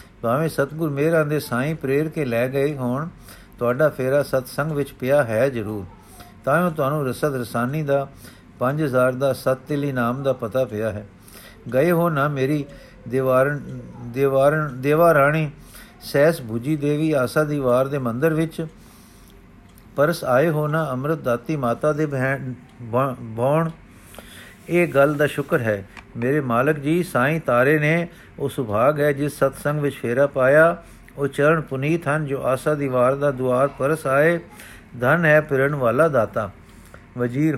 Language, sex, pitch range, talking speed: Punjabi, male, 120-150 Hz, 145 wpm